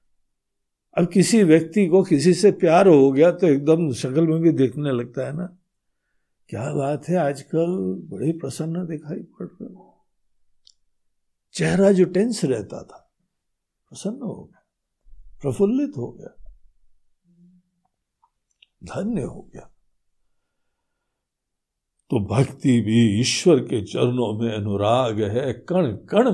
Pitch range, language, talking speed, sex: 125-195 Hz, Hindi, 120 wpm, male